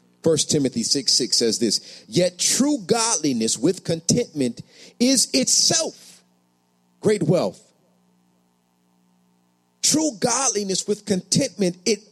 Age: 40-59